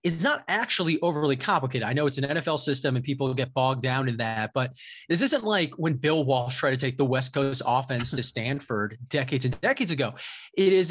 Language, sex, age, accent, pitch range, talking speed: English, male, 30-49, American, 130-170 Hz, 215 wpm